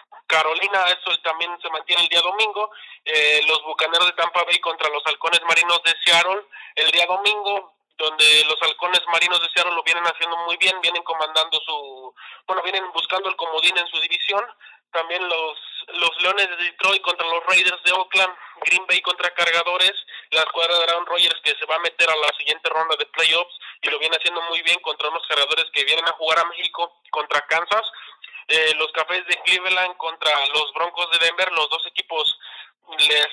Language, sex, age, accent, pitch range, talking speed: Spanish, male, 30-49, Mexican, 160-185 Hz, 195 wpm